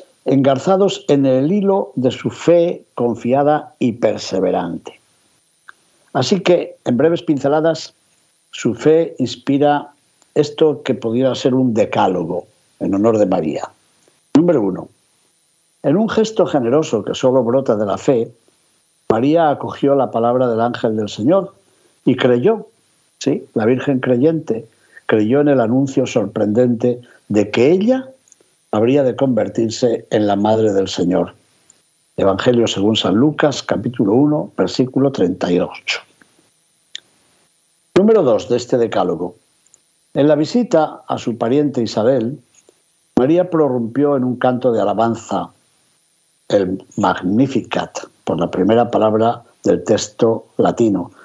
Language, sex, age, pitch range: Spanish, male, 60-79, 120-160 Hz